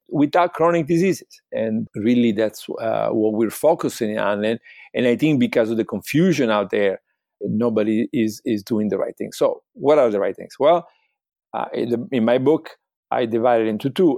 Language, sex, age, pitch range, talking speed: English, male, 50-69, 110-150 Hz, 195 wpm